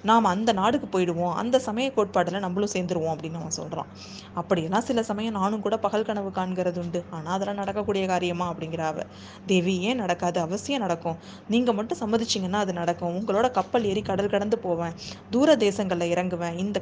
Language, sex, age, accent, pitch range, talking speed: Tamil, female, 20-39, native, 175-210 Hz, 160 wpm